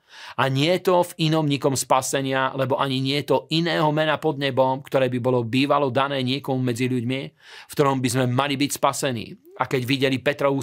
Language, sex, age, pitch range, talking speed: Slovak, male, 40-59, 125-145 Hz, 205 wpm